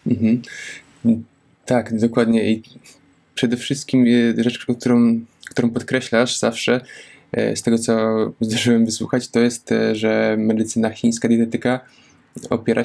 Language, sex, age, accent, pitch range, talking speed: Polish, male, 20-39, native, 110-120 Hz, 105 wpm